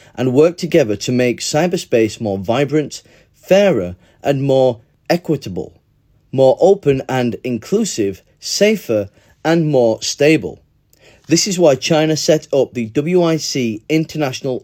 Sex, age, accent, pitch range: male, 30-49, British, 115-155 Hz